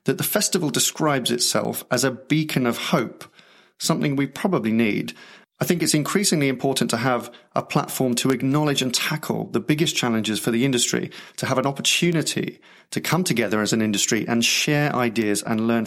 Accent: British